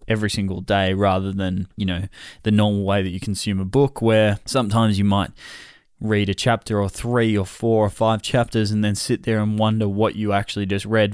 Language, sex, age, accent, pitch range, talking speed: English, male, 20-39, Australian, 105-120 Hz, 215 wpm